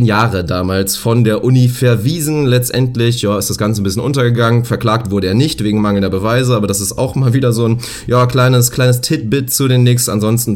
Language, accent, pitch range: German, German, 105-125 Hz